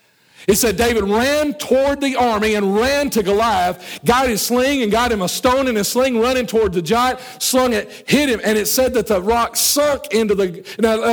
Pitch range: 210-255 Hz